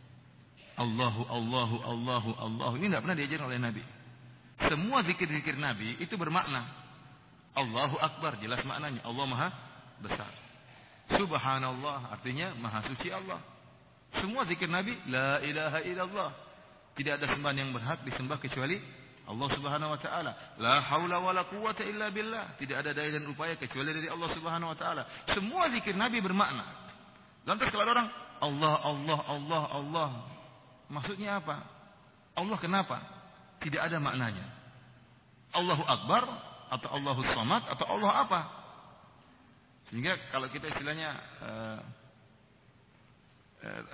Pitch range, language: 130-165 Hz, English